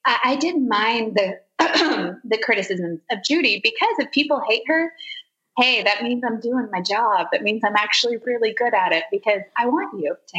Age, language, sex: 20-39, English, female